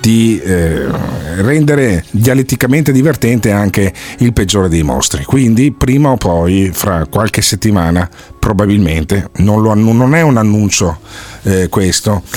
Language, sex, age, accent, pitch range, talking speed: Italian, male, 40-59, native, 105-145 Hz, 125 wpm